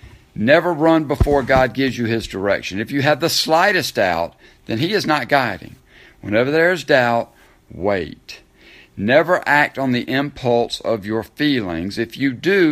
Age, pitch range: 60-79, 120-150 Hz